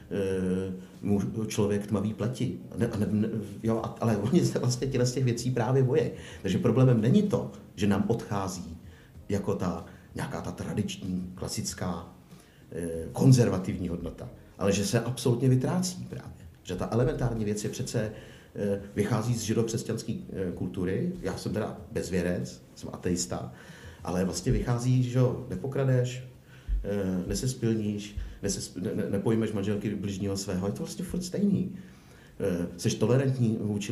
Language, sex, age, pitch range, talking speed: Czech, male, 50-69, 100-125 Hz, 135 wpm